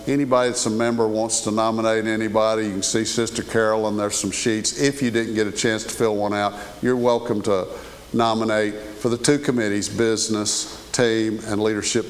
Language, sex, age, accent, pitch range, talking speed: English, male, 50-69, American, 110-130 Hz, 190 wpm